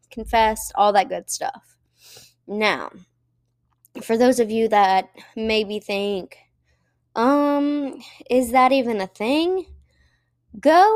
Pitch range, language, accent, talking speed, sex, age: 180-230 Hz, English, American, 110 wpm, female, 10-29